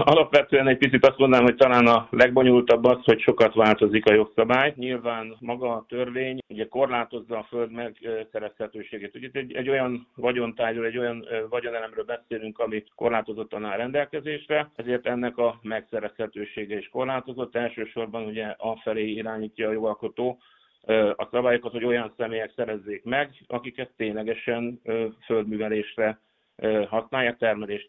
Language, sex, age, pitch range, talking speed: Hungarian, male, 60-79, 110-125 Hz, 130 wpm